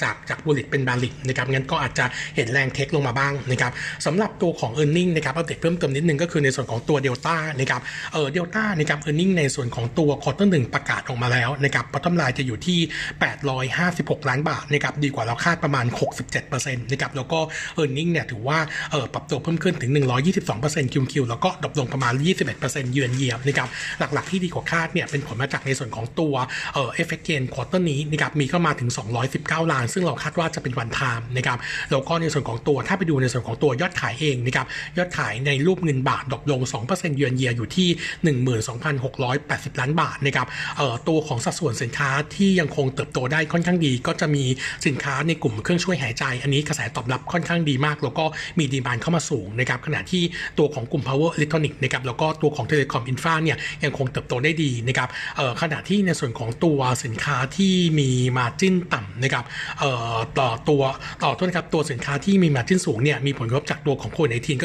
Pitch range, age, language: 130-160 Hz, 60-79, Thai